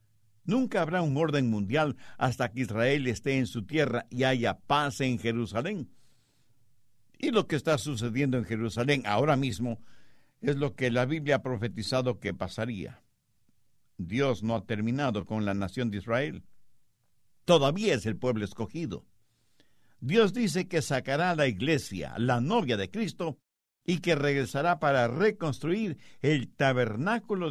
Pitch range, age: 115-165 Hz, 60-79